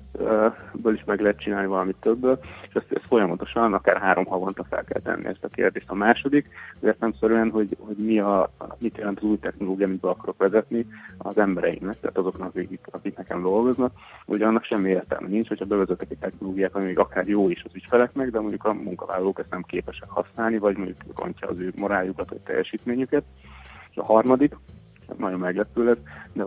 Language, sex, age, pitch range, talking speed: Hungarian, male, 30-49, 95-110 Hz, 190 wpm